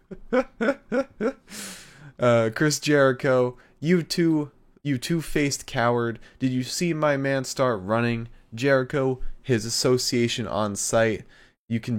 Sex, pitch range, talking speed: male, 105-130 Hz, 110 wpm